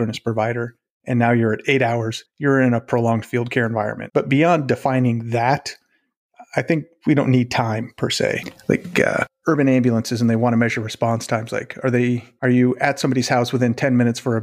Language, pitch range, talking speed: English, 115-135 Hz, 210 wpm